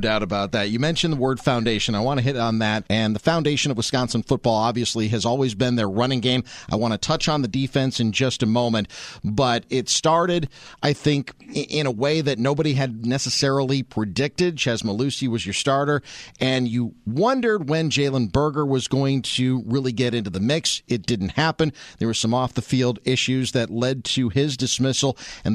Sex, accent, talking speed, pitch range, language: male, American, 195 wpm, 120-145 Hz, English